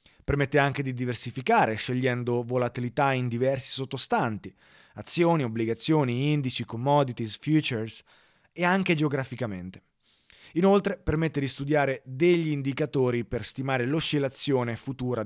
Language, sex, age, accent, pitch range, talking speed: Italian, male, 30-49, native, 120-150 Hz, 105 wpm